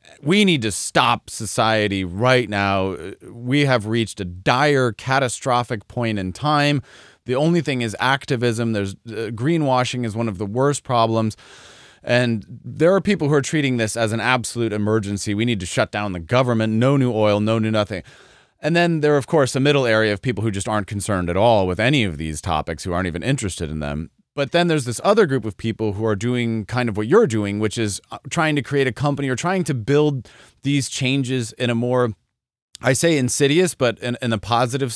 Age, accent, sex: 30-49, American, male